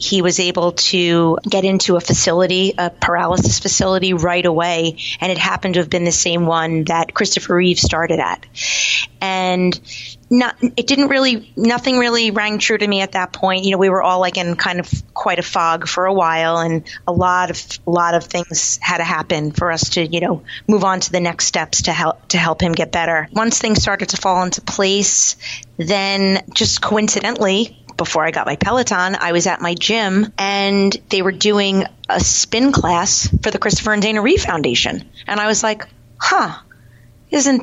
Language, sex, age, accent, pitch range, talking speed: English, female, 30-49, American, 170-200 Hz, 200 wpm